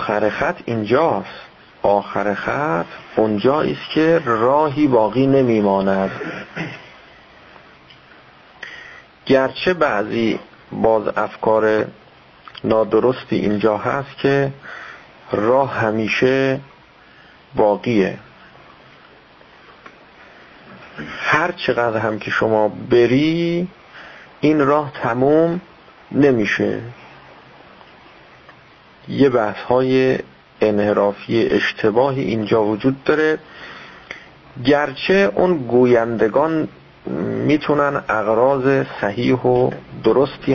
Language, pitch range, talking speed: Persian, 110-145 Hz, 70 wpm